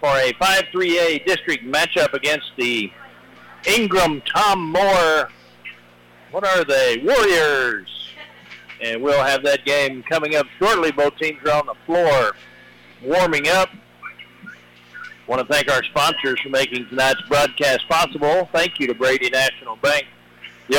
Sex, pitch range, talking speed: male, 135-185 Hz, 135 wpm